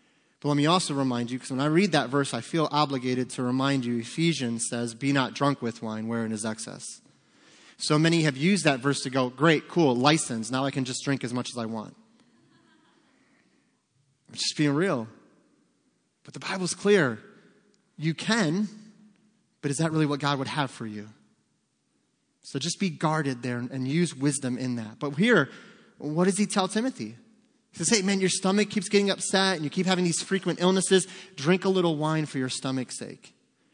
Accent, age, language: American, 30-49, English